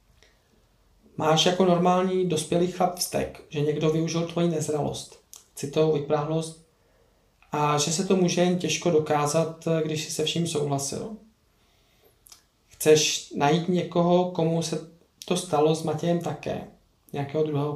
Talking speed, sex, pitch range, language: 130 wpm, male, 150-160 Hz, Czech